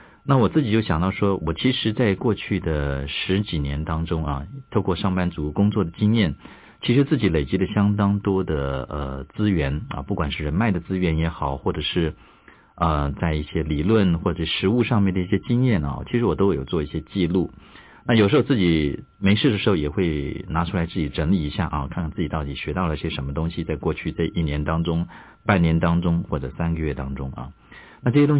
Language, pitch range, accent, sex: Chinese, 75-100 Hz, native, male